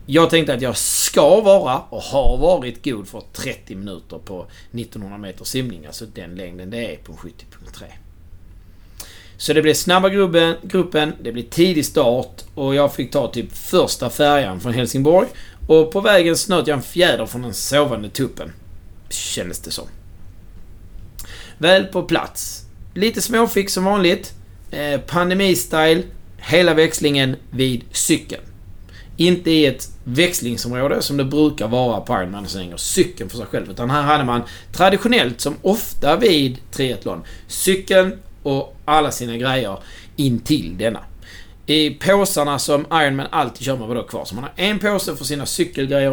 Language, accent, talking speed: Swedish, native, 155 wpm